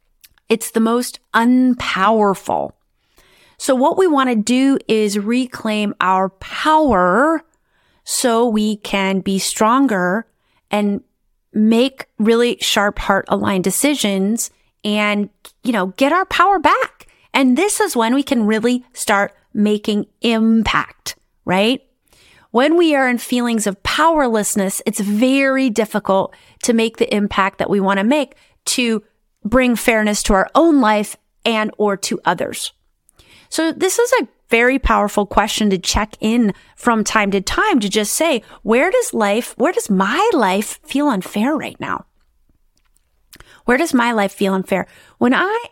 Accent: American